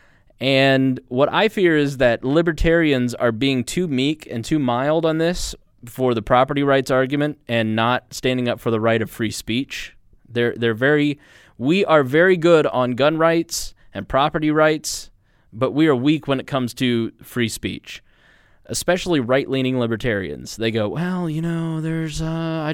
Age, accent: 20-39, American